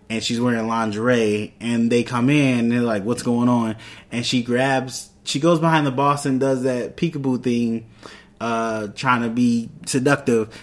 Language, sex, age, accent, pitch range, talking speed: English, male, 20-39, American, 120-150 Hz, 180 wpm